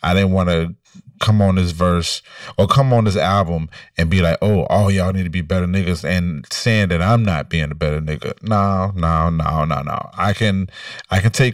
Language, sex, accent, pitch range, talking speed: English, male, American, 80-105 Hz, 230 wpm